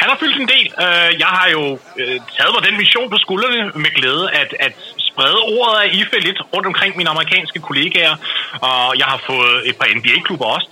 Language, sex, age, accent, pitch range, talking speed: English, male, 30-49, Danish, 135-185 Hz, 200 wpm